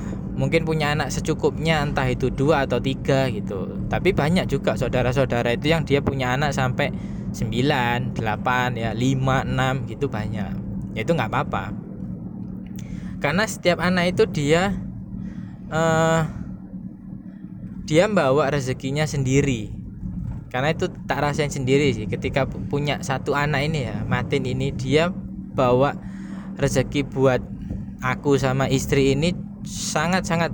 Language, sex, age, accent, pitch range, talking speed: Indonesian, male, 10-29, native, 130-170 Hz, 125 wpm